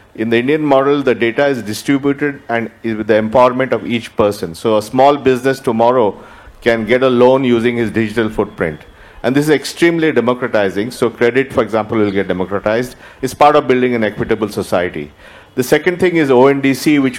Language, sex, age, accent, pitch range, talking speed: English, male, 50-69, Indian, 110-130 Hz, 190 wpm